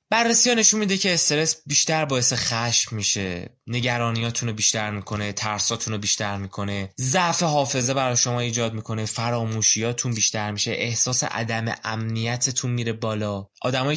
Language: Persian